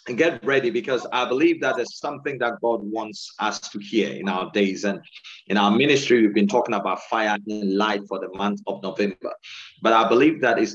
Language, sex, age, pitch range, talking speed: English, male, 40-59, 100-140 Hz, 220 wpm